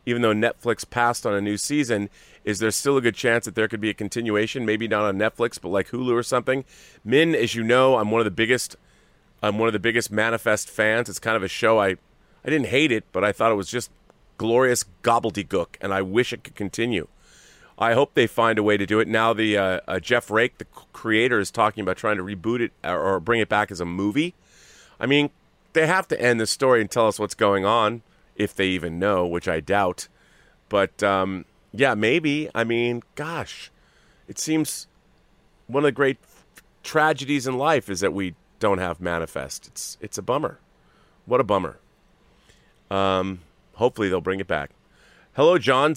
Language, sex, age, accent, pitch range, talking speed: English, male, 30-49, American, 105-125 Hz, 205 wpm